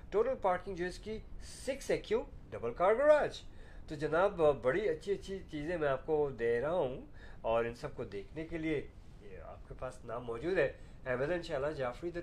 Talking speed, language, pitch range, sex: 195 wpm, Urdu, 115-175 Hz, male